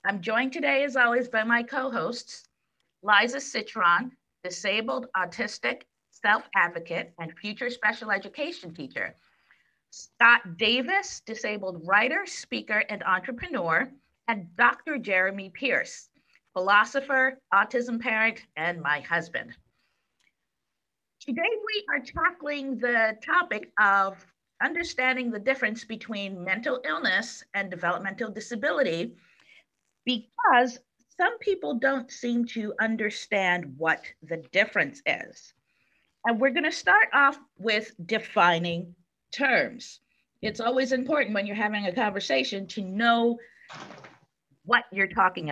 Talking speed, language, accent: 110 wpm, English, American